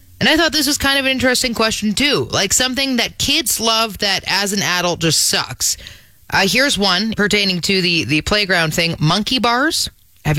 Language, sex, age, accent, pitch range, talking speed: English, female, 20-39, American, 200-265 Hz, 195 wpm